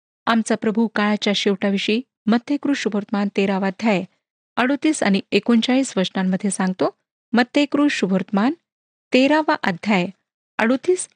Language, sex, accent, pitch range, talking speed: Marathi, female, native, 200-265 Hz, 95 wpm